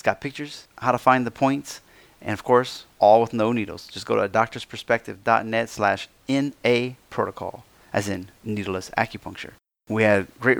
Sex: male